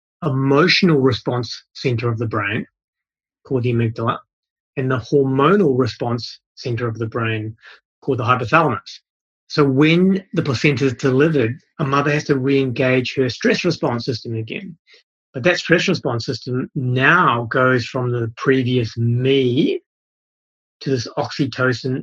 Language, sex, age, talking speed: English, male, 30-49, 135 wpm